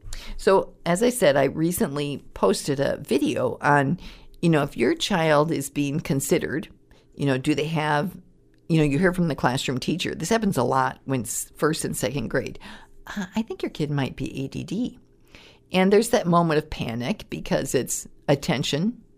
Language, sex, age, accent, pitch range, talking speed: English, female, 50-69, American, 135-185 Hz, 175 wpm